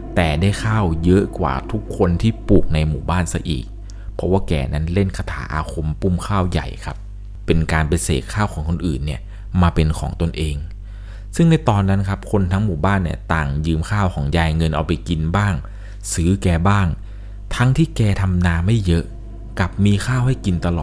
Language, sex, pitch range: Thai, male, 80-100 Hz